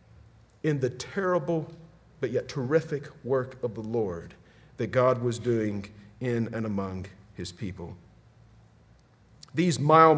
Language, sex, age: English, male, 40-59